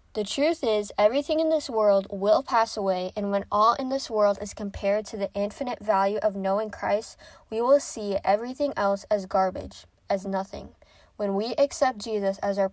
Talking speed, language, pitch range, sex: 190 wpm, English, 195-230 Hz, female